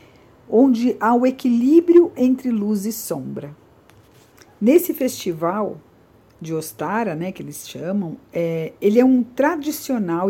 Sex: female